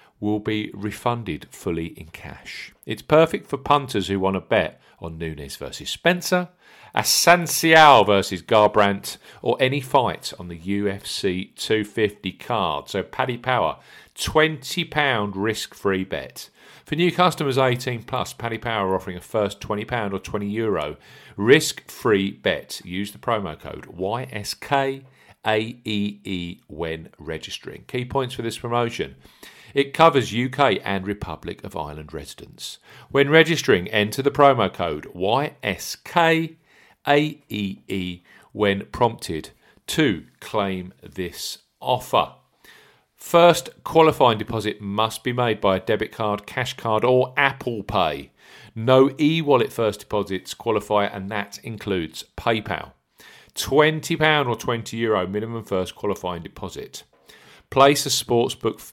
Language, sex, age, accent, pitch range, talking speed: English, male, 50-69, British, 100-140 Hz, 120 wpm